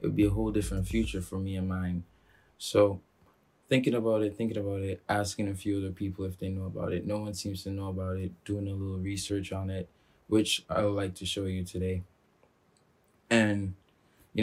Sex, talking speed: male, 210 wpm